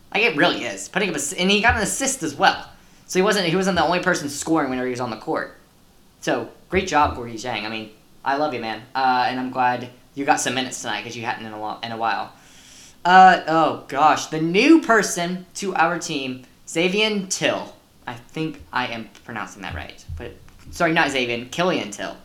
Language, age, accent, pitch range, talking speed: English, 10-29, American, 125-175 Hz, 215 wpm